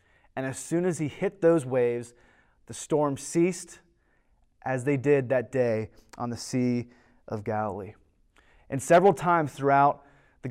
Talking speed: 150 wpm